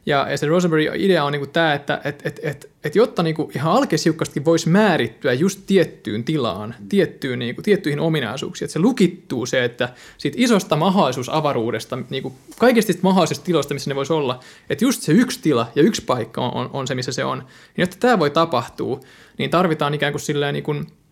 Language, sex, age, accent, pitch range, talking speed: Finnish, male, 20-39, native, 140-185 Hz, 190 wpm